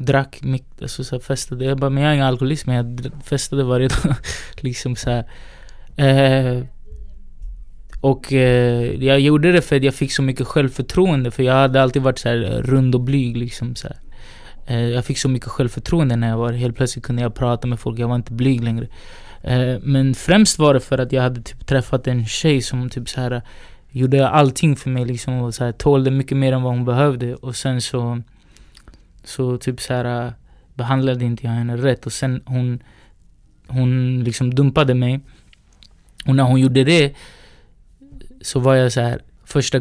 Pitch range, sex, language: 120-135 Hz, male, Swedish